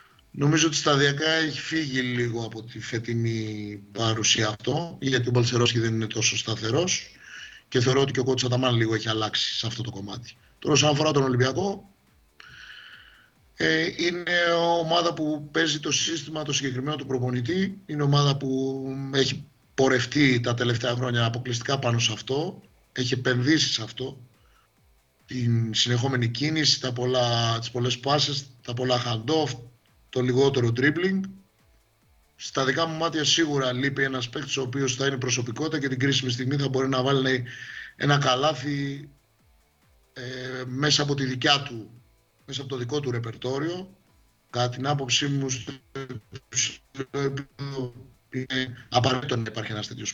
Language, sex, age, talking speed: Greek, male, 30-49, 145 wpm